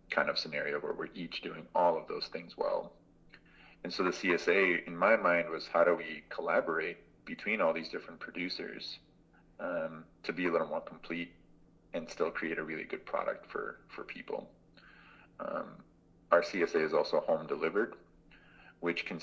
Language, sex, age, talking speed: English, male, 30-49, 170 wpm